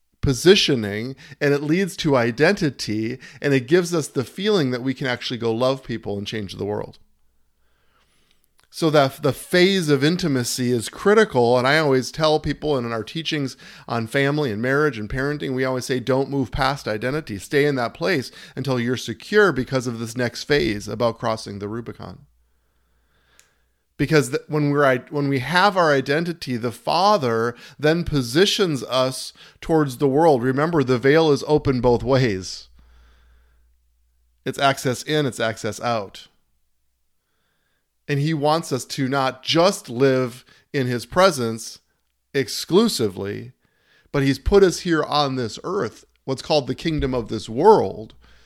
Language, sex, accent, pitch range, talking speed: English, male, American, 110-150 Hz, 150 wpm